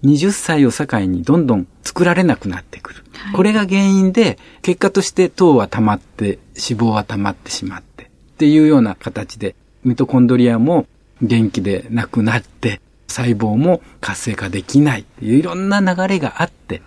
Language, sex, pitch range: Japanese, male, 110-165 Hz